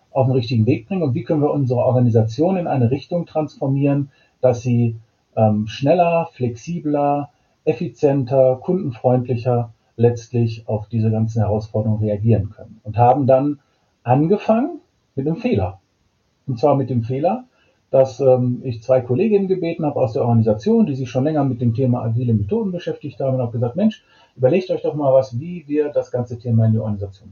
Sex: male